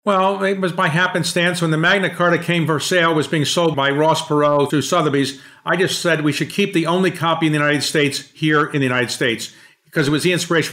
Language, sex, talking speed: English, male, 245 wpm